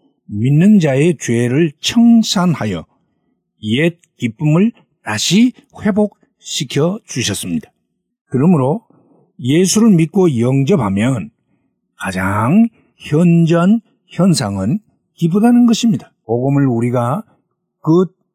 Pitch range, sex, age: 130-195 Hz, male, 60-79